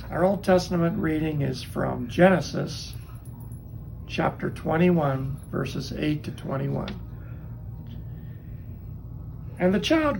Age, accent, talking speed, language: 60-79, American, 95 wpm, English